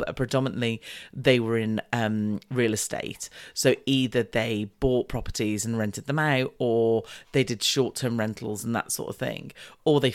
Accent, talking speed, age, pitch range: British, 170 wpm, 40-59, 125-170 Hz